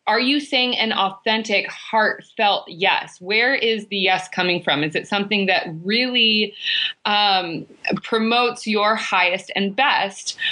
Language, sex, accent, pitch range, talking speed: English, female, American, 185-235 Hz, 135 wpm